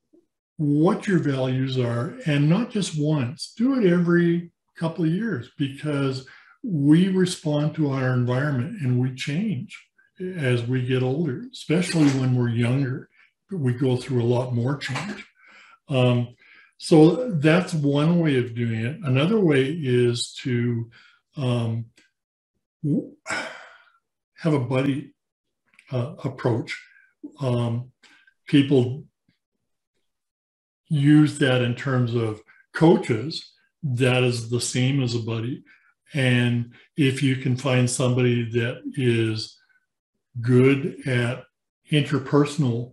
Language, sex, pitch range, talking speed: English, male, 125-165 Hz, 115 wpm